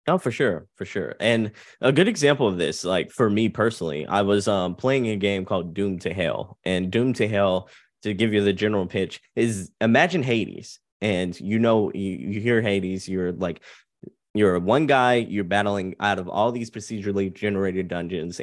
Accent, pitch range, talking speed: American, 95-115 Hz, 190 wpm